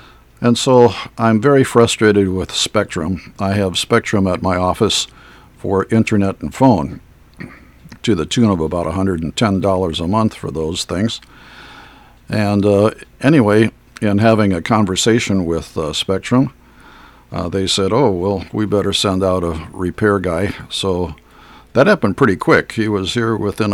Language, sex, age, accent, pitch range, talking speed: English, male, 50-69, American, 95-115 Hz, 150 wpm